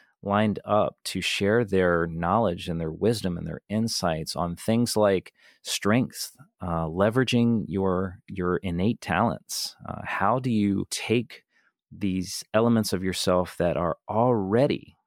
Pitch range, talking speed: 85-100 Hz, 135 wpm